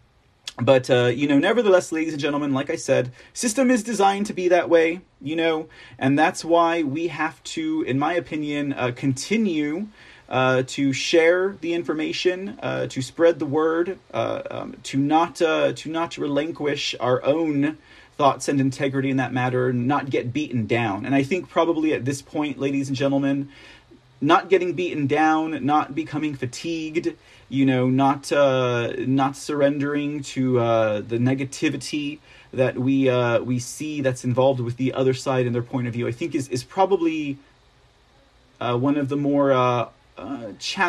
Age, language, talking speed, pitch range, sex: 30-49, English, 170 wpm, 125-160 Hz, male